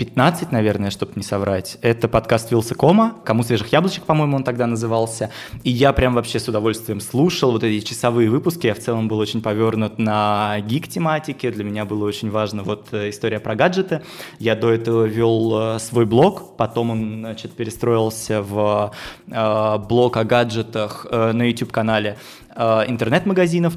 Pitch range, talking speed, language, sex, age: 110-130 Hz, 150 wpm, Russian, male, 20-39